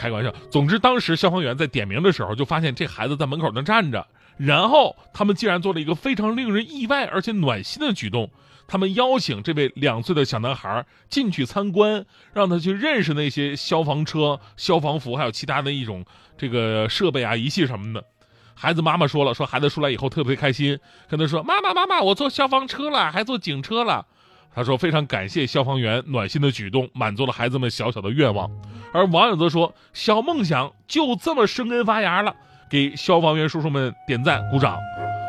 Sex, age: male, 20-39